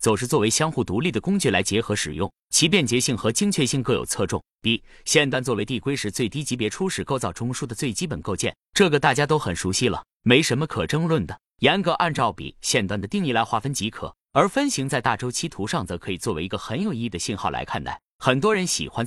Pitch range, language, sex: 115-160 Hz, Chinese, male